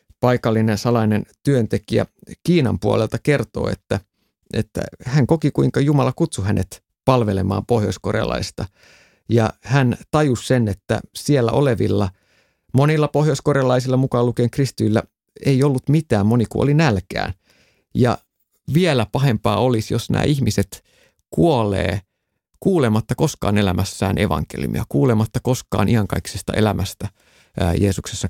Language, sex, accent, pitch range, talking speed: Finnish, male, native, 100-130 Hz, 110 wpm